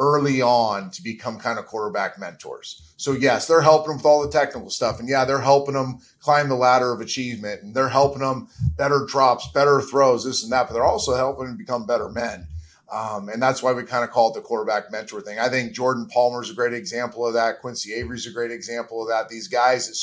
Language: English